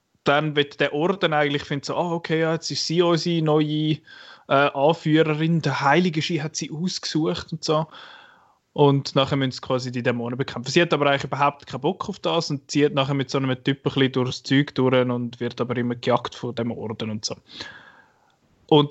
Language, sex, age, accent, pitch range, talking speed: German, male, 20-39, Austrian, 130-160 Hz, 200 wpm